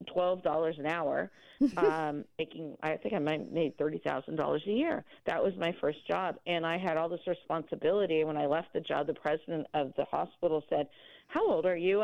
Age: 40-59